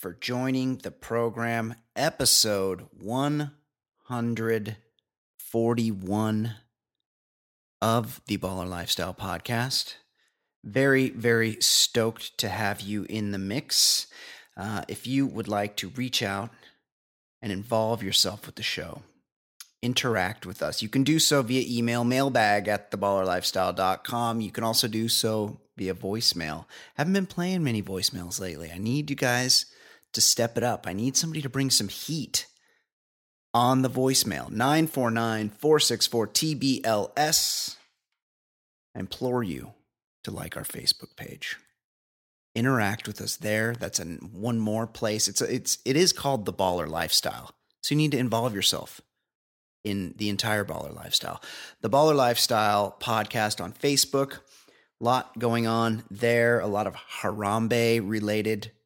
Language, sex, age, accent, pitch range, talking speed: English, male, 30-49, American, 100-125 Hz, 135 wpm